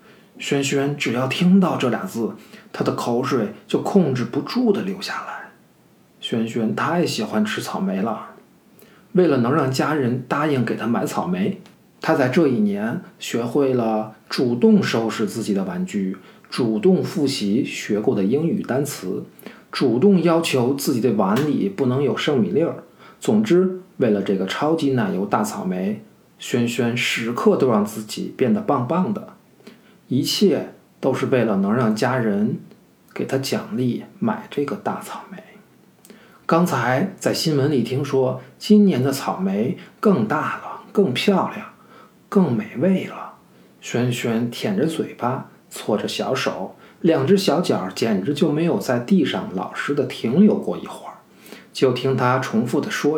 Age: 50-69